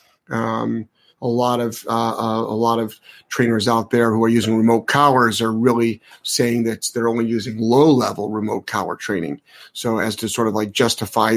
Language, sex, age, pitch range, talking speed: English, male, 30-49, 115-135 Hz, 195 wpm